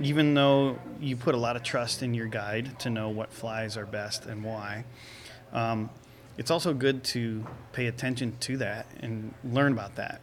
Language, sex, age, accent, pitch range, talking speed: English, male, 30-49, American, 115-135 Hz, 190 wpm